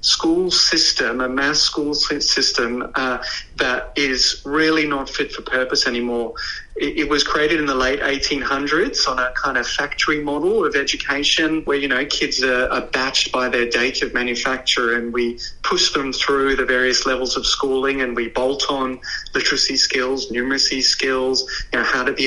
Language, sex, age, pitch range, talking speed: English, male, 30-49, 125-150 Hz, 180 wpm